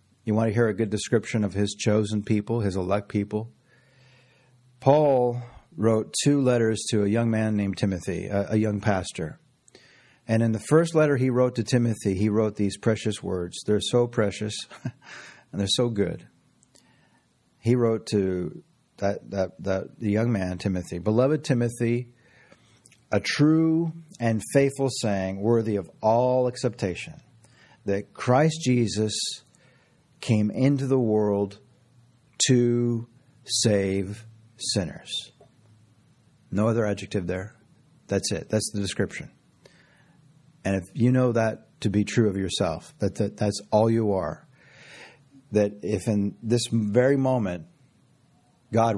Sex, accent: male, American